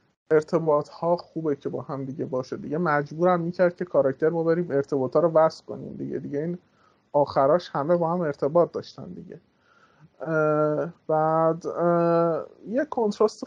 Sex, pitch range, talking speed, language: male, 145-180 Hz, 155 wpm, Persian